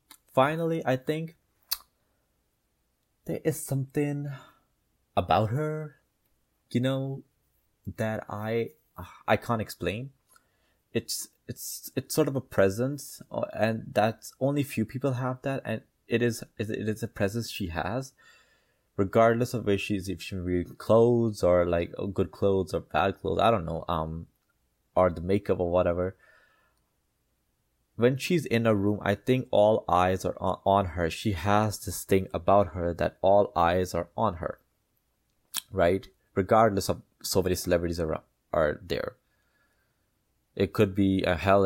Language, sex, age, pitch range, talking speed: English, male, 20-39, 90-120 Hz, 145 wpm